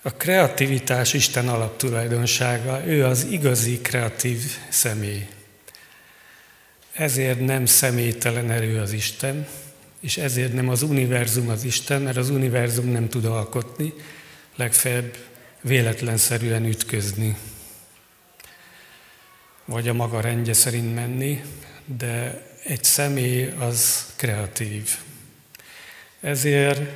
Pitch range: 115-140 Hz